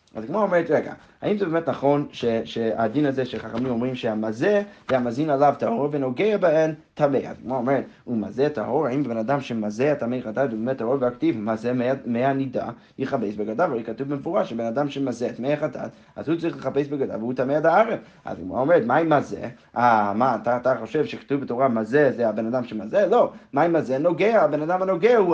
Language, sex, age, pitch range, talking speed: Hebrew, male, 30-49, 120-150 Hz, 205 wpm